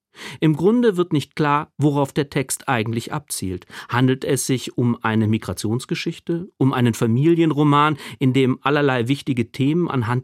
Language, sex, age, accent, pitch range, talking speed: German, male, 40-59, German, 130-170 Hz, 145 wpm